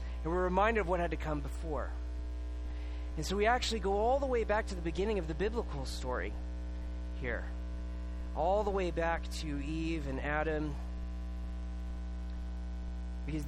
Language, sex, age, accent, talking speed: English, male, 30-49, American, 155 wpm